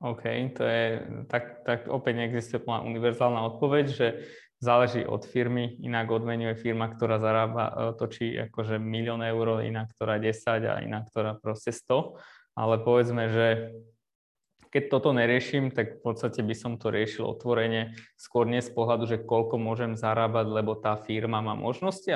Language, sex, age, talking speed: Slovak, male, 20-39, 155 wpm